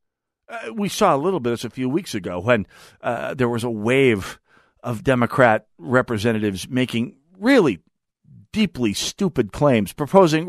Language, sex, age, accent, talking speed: English, male, 50-69, American, 150 wpm